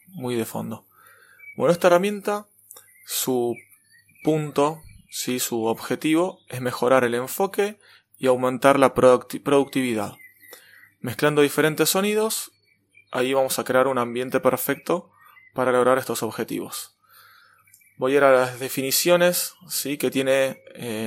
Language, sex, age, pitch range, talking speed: Spanish, male, 20-39, 120-155 Hz, 115 wpm